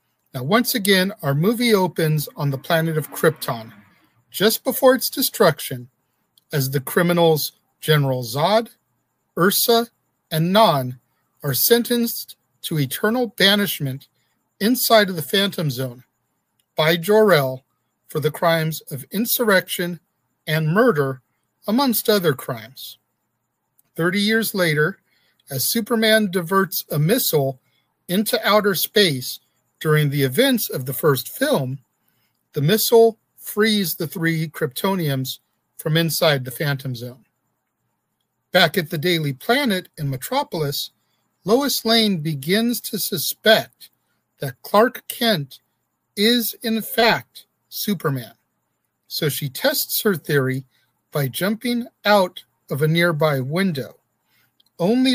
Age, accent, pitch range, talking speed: 50-69, American, 135-215 Hz, 115 wpm